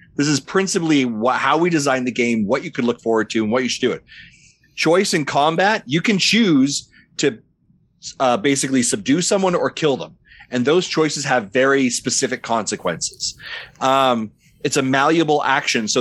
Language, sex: English, male